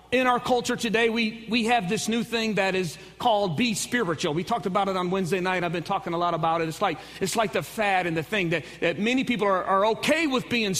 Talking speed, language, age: 260 wpm, English, 40-59